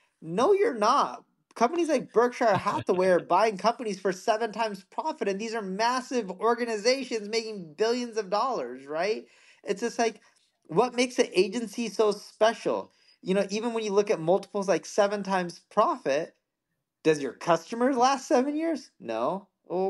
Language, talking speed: English, 160 wpm